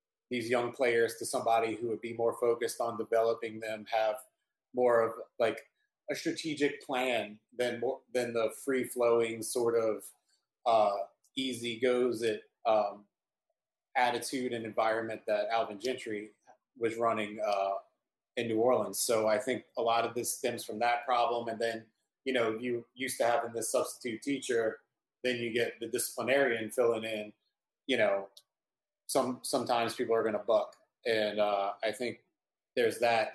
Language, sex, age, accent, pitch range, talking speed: English, male, 30-49, American, 110-125 Hz, 160 wpm